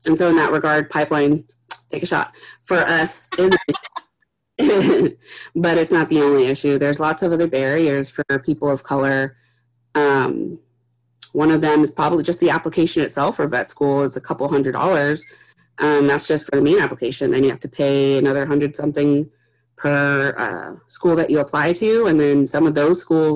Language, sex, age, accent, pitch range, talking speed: English, female, 30-49, American, 140-160 Hz, 190 wpm